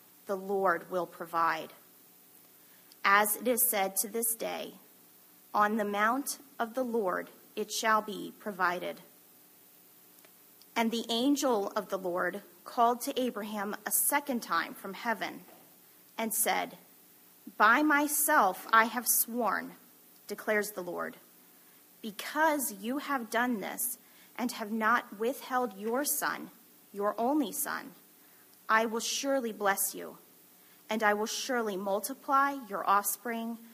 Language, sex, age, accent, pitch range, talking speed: English, female, 30-49, American, 180-235 Hz, 125 wpm